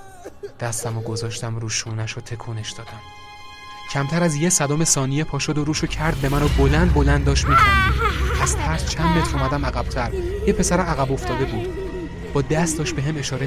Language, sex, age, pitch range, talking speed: Persian, male, 30-49, 110-135 Hz, 180 wpm